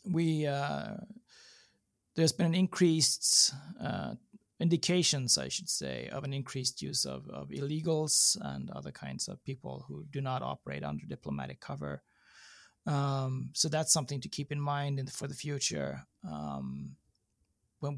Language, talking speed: English, 150 wpm